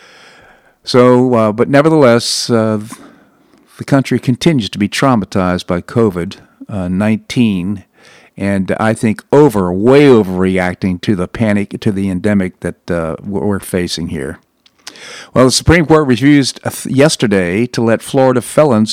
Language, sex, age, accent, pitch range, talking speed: English, male, 50-69, American, 105-130 Hz, 130 wpm